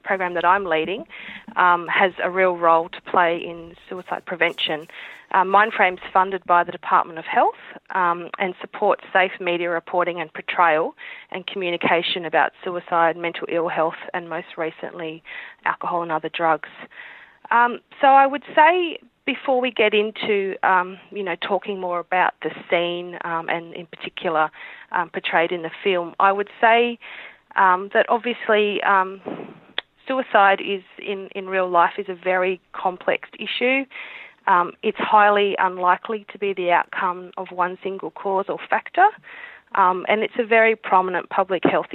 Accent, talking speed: Australian, 155 wpm